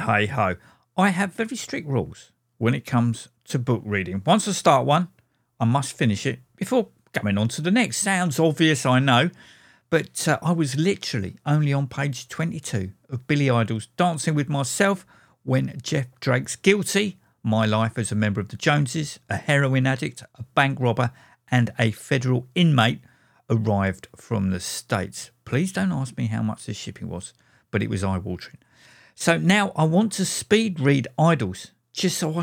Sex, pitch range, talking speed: male, 115-175 Hz, 180 wpm